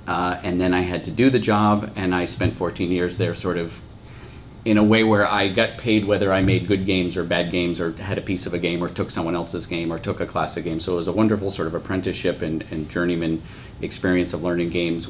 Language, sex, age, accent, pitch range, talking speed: English, male, 40-59, American, 85-110 Hz, 255 wpm